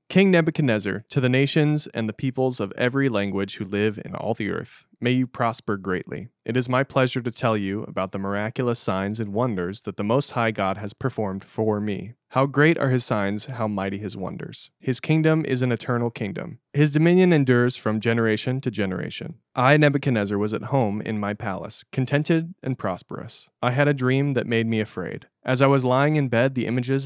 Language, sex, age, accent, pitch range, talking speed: English, male, 20-39, American, 105-135 Hz, 205 wpm